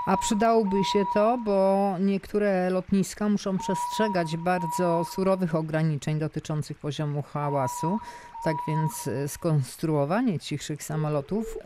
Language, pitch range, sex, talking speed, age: Polish, 150-195 Hz, female, 105 wpm, 50-69